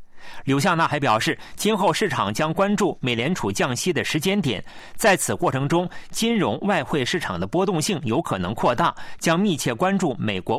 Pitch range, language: 110-185 Hz, Chinese